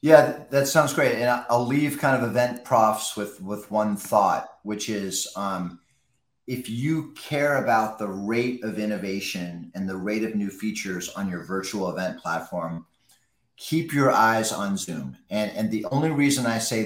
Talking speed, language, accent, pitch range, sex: 175 wpm, English, American, 100-125 Hz, male